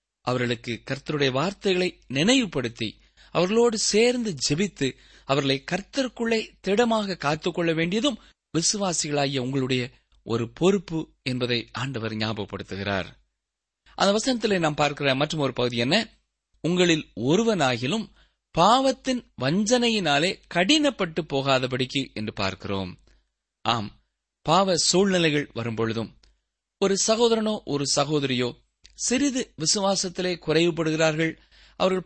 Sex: male